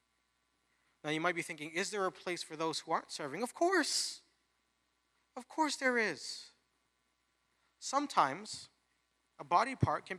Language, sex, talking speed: English, male, 145 wpm